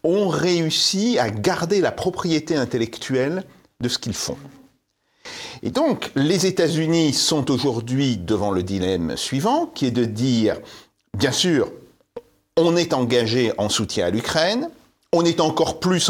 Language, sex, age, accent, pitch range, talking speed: French, male, 40-59, French, 115-175 Hz, 140 wpm